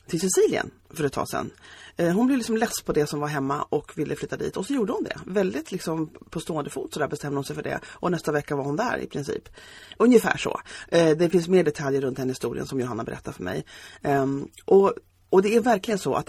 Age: 30-49